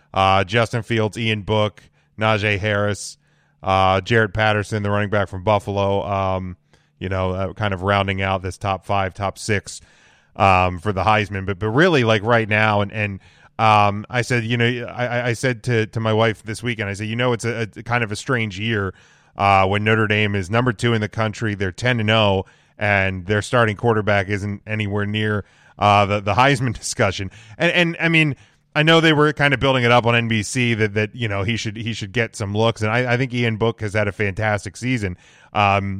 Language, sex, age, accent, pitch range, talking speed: English, male, 30-49, American, 100-115 Hz, 215 wpm